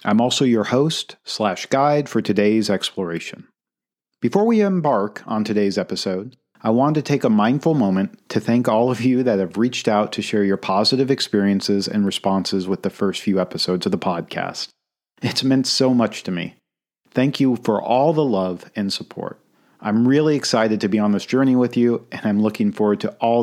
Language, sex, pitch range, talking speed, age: English, male, 105-145 Hz, 195 wpm, 40-59